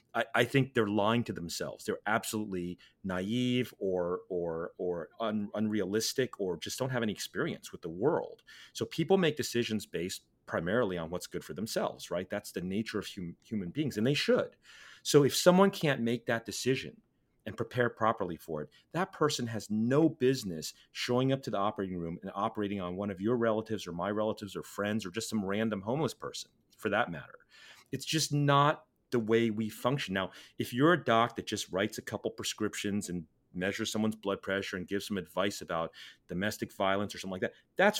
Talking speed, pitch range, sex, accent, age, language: 190 wpm, 95-120 Hz, male, American, 30-49, English